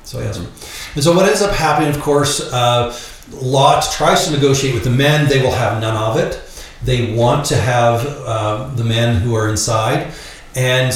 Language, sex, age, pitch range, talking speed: English, male, 40-59, 110-135 Hz, 205 wpm